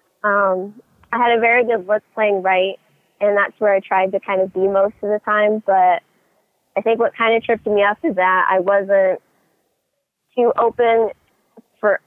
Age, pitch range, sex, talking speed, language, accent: 20-39, 190-210 Hz, female, 190 wpm, English, American